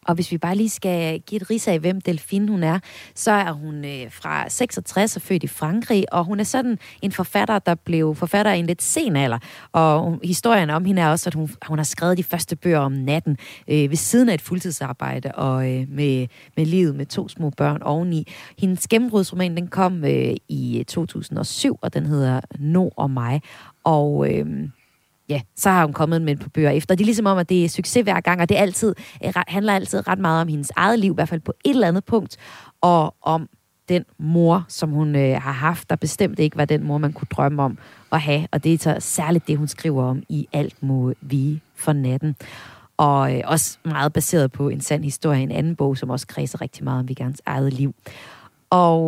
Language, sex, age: Danish, female, 30-49